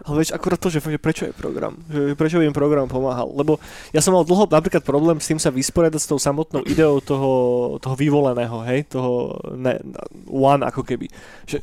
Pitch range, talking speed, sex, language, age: 135-155 Hz, 195 wpm, male, Slovak, 20-39